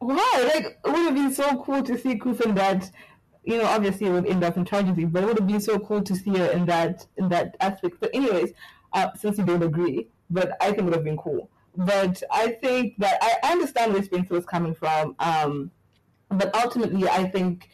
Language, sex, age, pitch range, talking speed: English, female, 20-39, 165-205 Hz, 225 wpm